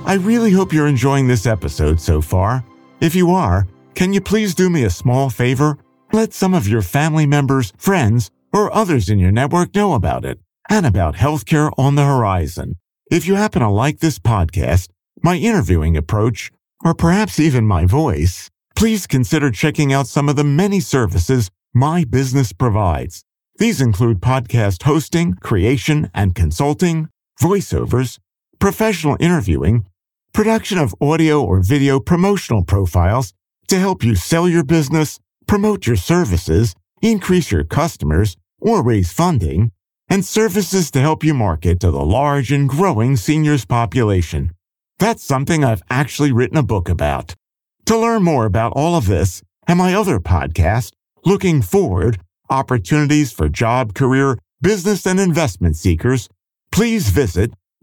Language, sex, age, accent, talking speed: English, male, 50-69, American, 150 wpm